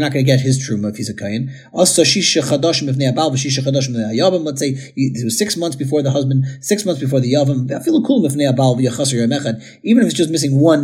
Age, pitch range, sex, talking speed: 30-49, 130-185 Hz, male, 235 wpm